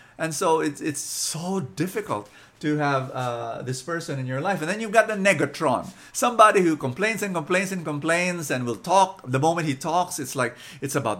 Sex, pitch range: male, 140-200 Hz